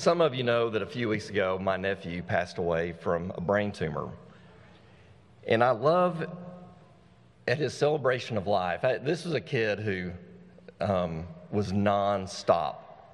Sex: male